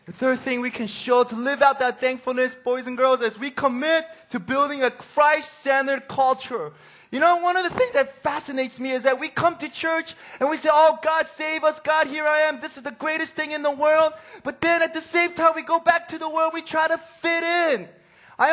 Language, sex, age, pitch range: Korean, male, 20-39, 245-310 Hz